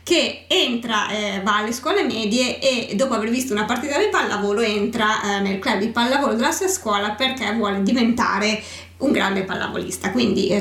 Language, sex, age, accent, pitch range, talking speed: Italian, female, 20-39, native, 205-270 Hz, 180 wpm